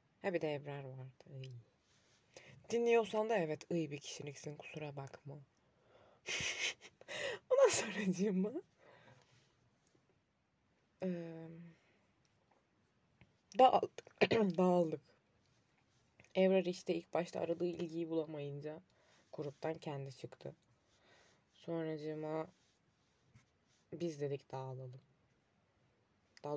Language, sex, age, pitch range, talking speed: Turkish, female, 20-39, 140-180 Hz, 80 wpm